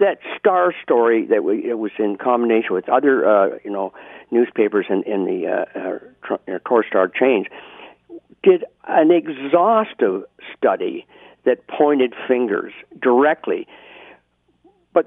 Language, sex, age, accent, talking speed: English, male, 50-69, American, 130 wpm